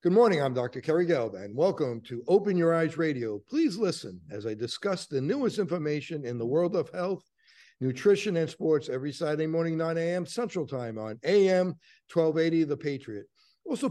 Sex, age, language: male, 60-79, English